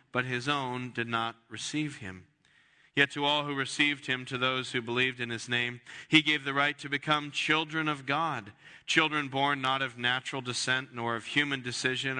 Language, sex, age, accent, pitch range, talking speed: English, male, 40-59, American, 115-145 Hz, 190 wpm